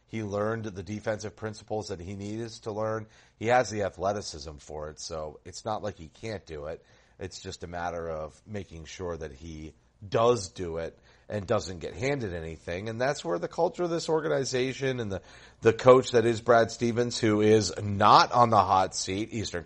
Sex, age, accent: male, 30-49, American